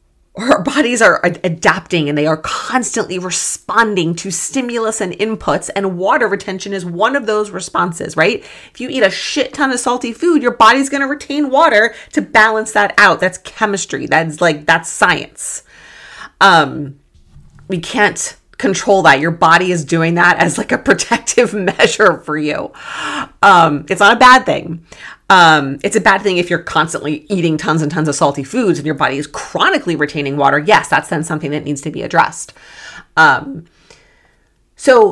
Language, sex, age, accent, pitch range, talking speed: English, female, 30-49, American, 160-205 Hz, 180 wpm